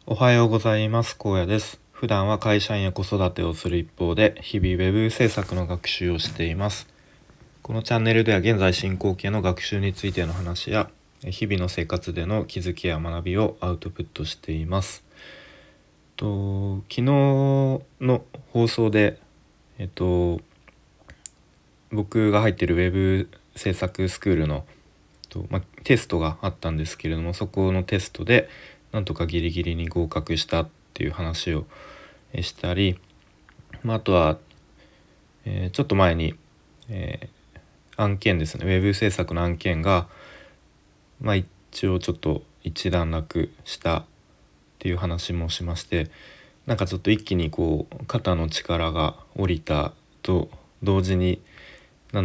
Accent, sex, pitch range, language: native, male, 85-105 Hz, Japanese